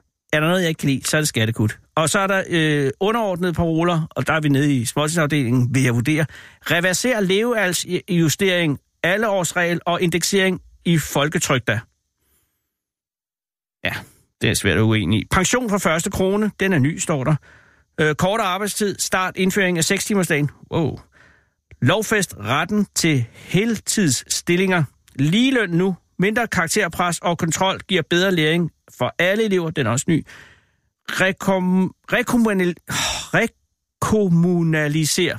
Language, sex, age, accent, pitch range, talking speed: Danish, male, 60-79, native, 150-195 Hz, 135 wpm